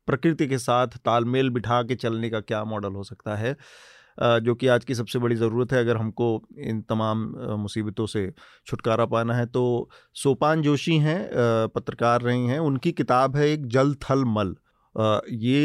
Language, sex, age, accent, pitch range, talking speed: Hindi, male, 30-49, native, 115-140 Hz, 175 wpm